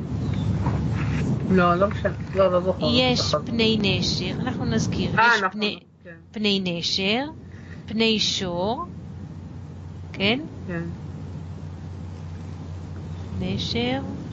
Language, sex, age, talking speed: Hebrew, female, 40-59, 80 wpm